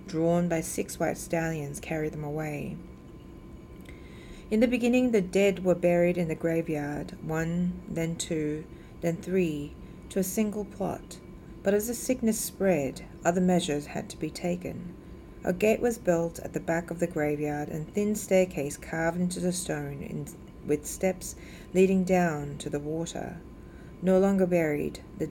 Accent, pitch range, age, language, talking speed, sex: Australian, 155-185 Hz, 40-59, English, 155 wpm, female